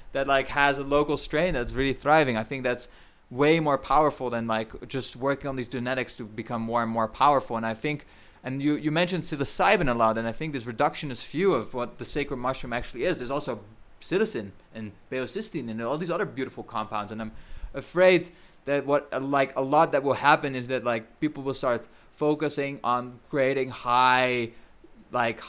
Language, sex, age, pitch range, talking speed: English, male, 20-39, 115-145 Hz, 200 wpm